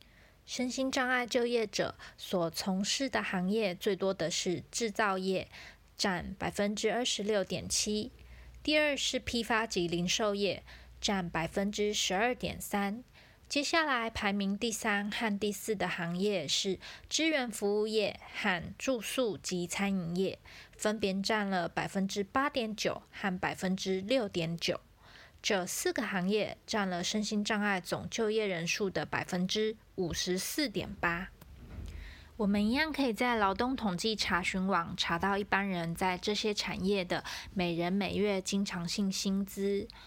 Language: Chinese